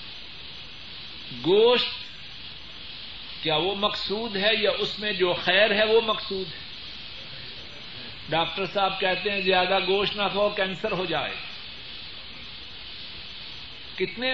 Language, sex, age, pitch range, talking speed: Urdu, male, 50-69, 185-250 Hz, 110 wpm